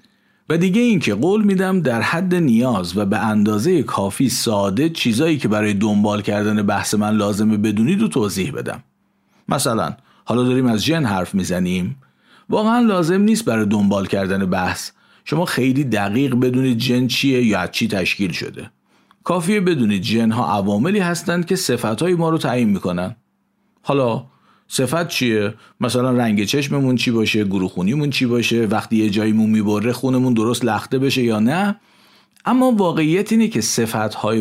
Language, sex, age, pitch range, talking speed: Persian, male, 50-69, 105-170 Hz, 155 wpm